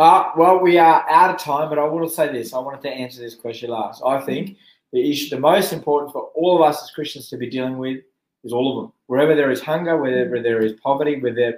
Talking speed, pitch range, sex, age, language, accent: 260 wpm, 125-160 Hz, male, 20-39, English, Australian